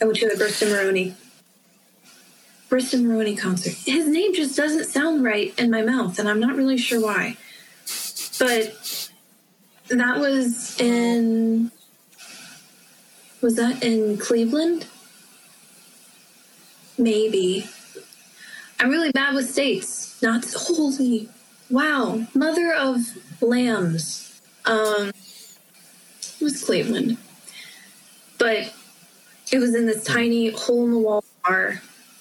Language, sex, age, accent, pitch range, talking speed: English, female, 20-39, American, 200-245 Hz, 110 wpm